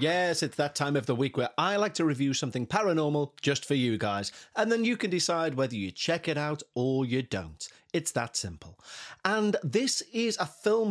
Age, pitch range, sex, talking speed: 30-49, 120-165 Hz, male, 215 wpm